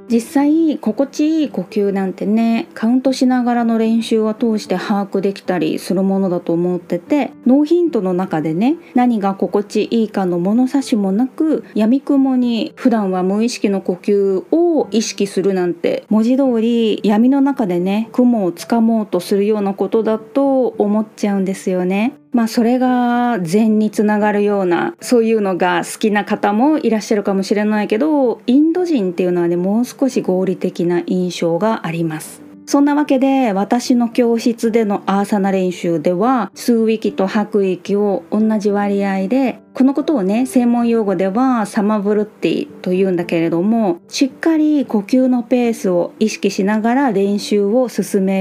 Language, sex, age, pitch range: Japanese, female, 20-39, 195-245 Hz